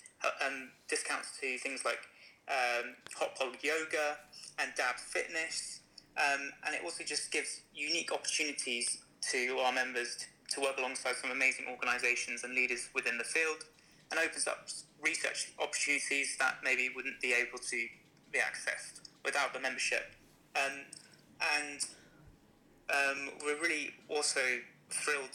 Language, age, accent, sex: English, 20-39, British, male